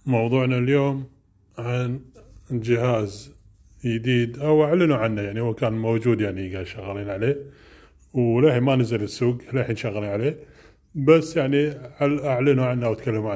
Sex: male